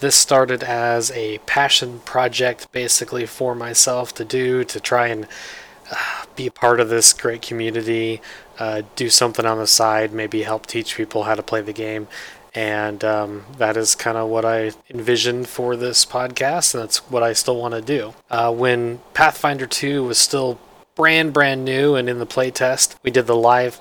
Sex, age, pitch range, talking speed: male, 20-39, 115-130 Hz, 185 wpm